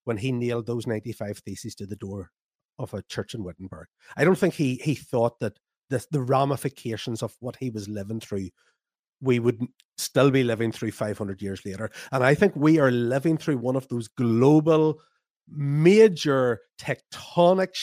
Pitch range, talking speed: 110-140 Hz, 175 wpm